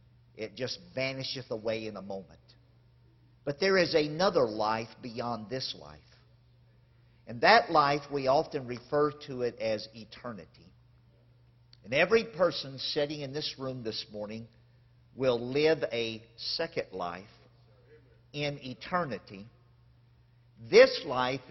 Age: 50-69